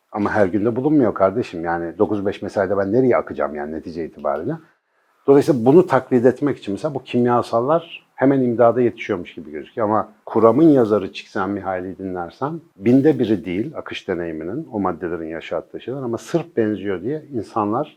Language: Turkish